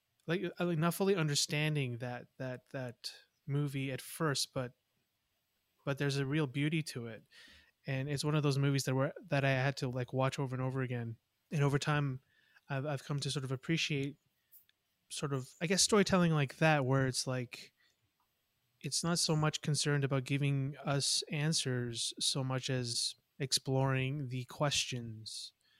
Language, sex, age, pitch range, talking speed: English, male, 20-39, 130-150 Hz, 165 wpm